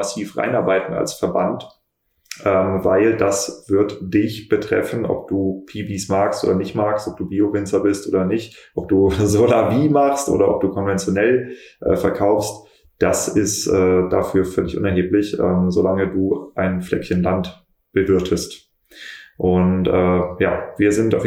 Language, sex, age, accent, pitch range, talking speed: German, male, 20-39, German, 90-100 Hz, 150 wpm